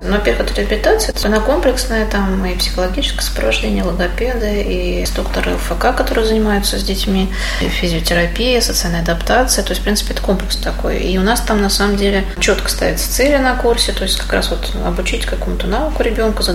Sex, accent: female, native